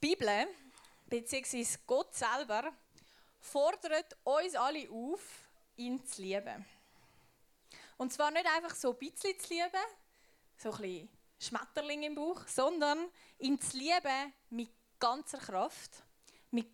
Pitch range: 235-315 Hz